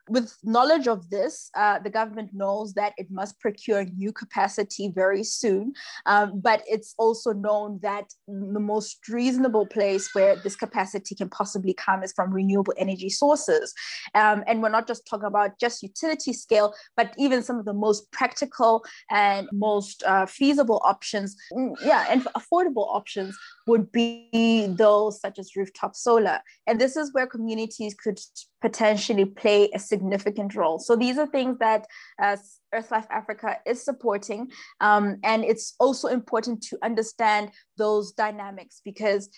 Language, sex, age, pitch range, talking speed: English, female, 20-39, 200-230 Hz, 155 wpm